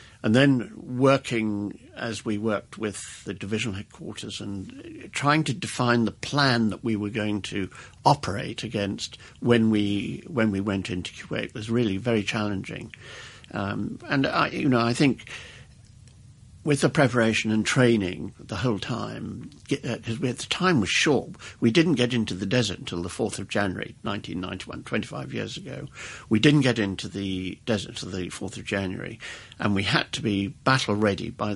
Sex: male